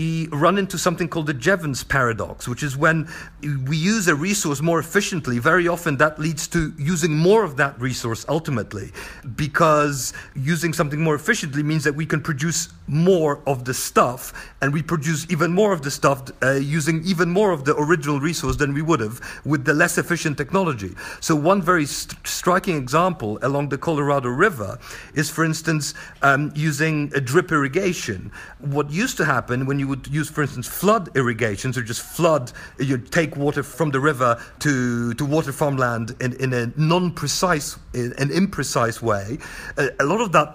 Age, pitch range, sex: 50-69, 135-170 Hz, male